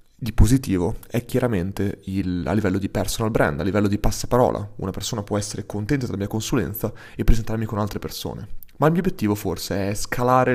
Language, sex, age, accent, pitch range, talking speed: Italian, male, 20-39, native, 105-120 Hz, 195 wpm